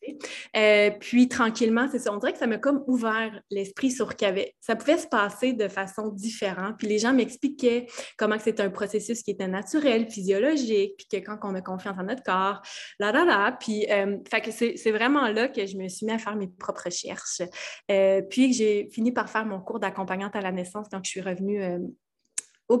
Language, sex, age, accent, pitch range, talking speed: French, female, 20-39, Canadian, 200-240 Hz, 225 wpm